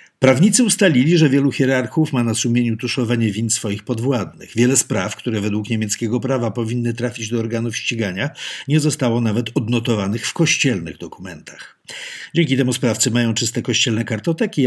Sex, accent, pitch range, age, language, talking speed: male, native, 105-135 Hz, 50-69, Polish, 150 wpm